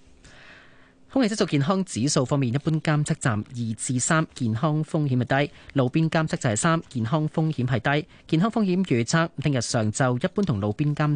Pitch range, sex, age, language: 115-155 Hz, male, 30-49, Chinese